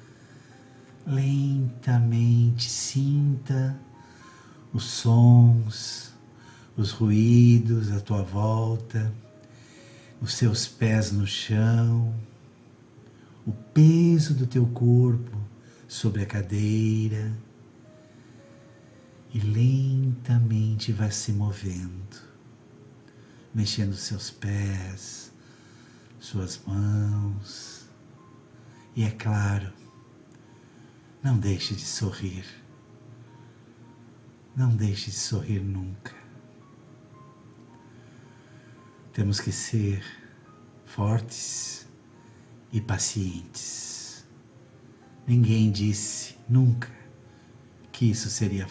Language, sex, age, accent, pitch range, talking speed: Portuguese, male, 60-79, Brazilian, 110-120 Hz, 70 wpm